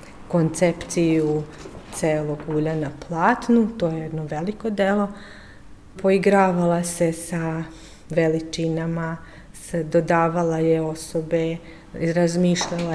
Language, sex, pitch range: Slovak, female, 160-175 Hz